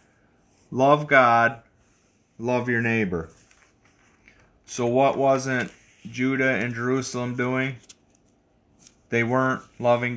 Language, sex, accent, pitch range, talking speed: English, male, American, 100-130 Hz, 90 wpm